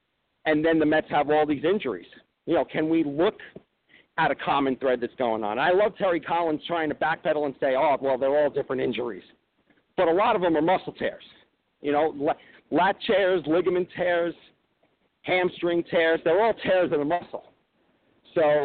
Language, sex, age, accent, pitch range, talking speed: English, male, 50-69, American, 150-185 Hz, 185 wpm